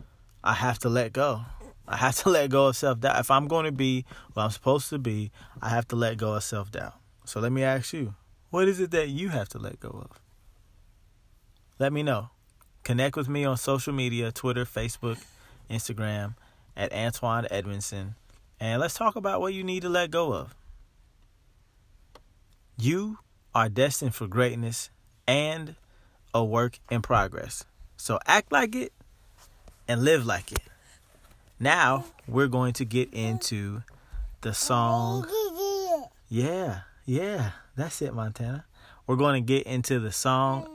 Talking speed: 160 wpm